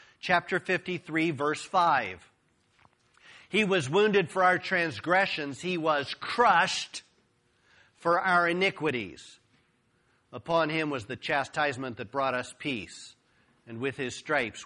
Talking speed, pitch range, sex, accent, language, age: 120 wpm, 160-225 Hz, male, American, English, 50-69